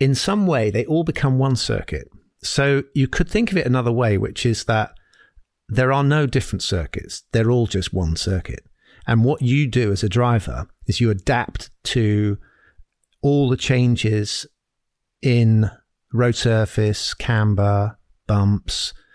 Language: English